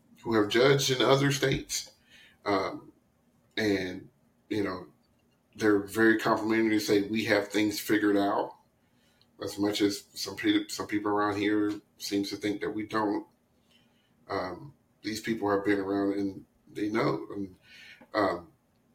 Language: English